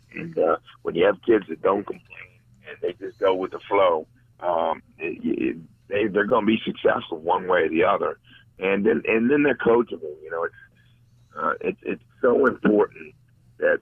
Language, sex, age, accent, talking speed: English, male, 50-69, American, 195 wpm